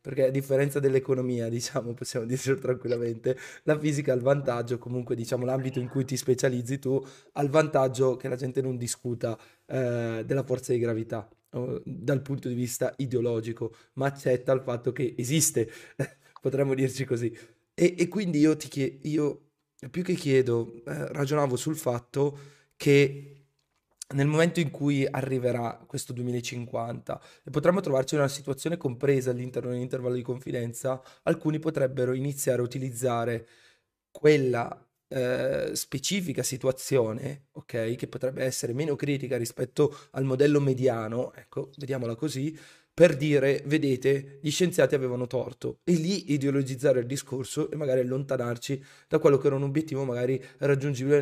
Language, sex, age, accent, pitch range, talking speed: Italian, male, 20-39, native, 125-145 Hz, 150 wpm